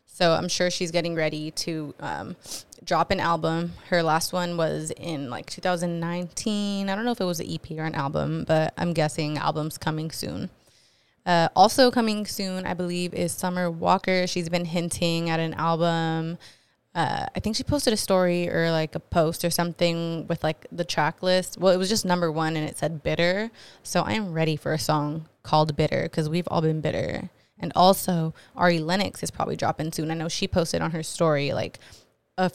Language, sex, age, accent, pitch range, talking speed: English, female, 20-39, American, 160-185 Hz, 200 wpm